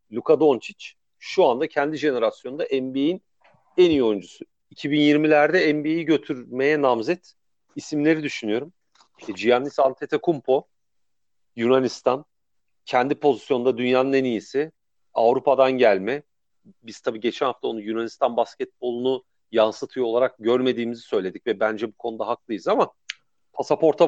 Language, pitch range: Turkish, 125-165 Hz